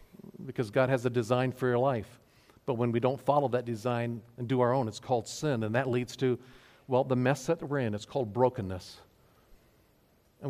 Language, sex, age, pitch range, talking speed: English, male, 50-69, 120-165 Hz, 230 wpm